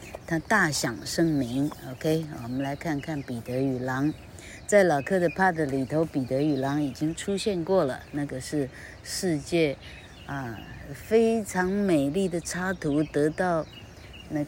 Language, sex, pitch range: Chinese, female, 120-165 Hz